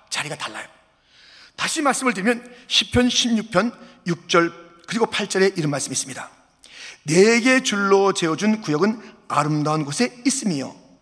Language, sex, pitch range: Korean, male, 170-260 Hz